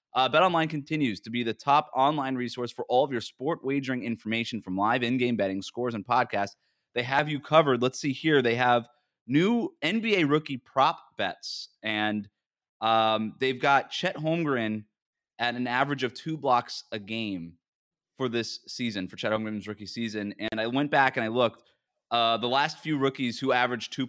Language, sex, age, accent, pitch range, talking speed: English, male, 20-39, American, 110-140 Hz, 190 wpm